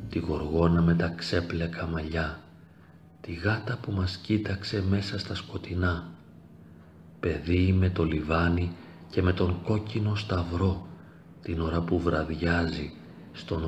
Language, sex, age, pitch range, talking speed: Greek, male, 40-59, 80-95 Hz, 125 wpm